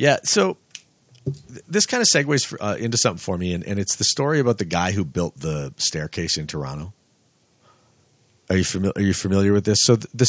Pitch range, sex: 85-115 Hz, male